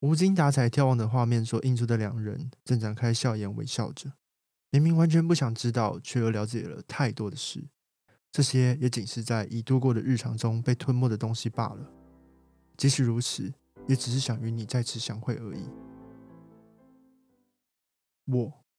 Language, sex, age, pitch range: Chinese, male, 20-39, 110-135 Hz